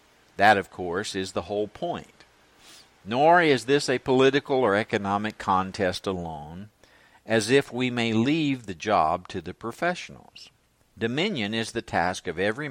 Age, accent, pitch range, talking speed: 60-79, American, 100-125 Hz, 150 wpm